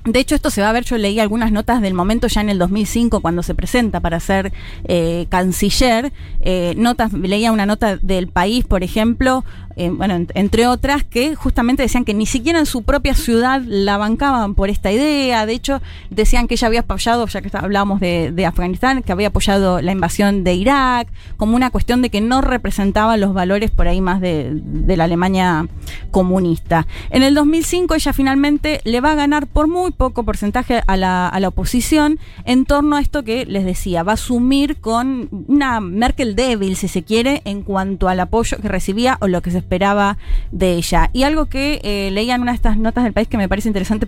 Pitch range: 195-265 Hz